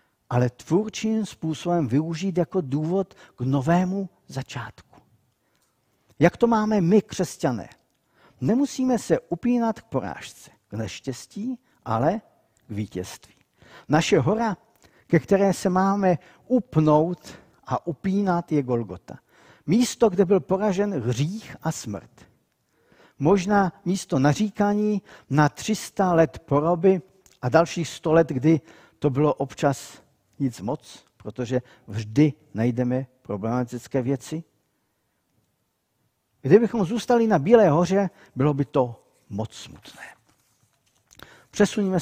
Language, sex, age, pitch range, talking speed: Czech, male, 50-69, 125-190 Hz, 105 wpm